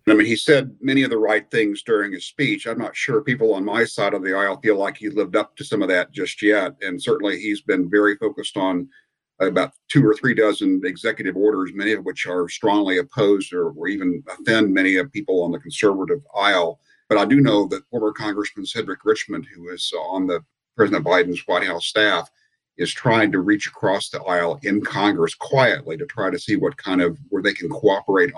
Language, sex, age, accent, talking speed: English, male, 50-69, American, 220 wpm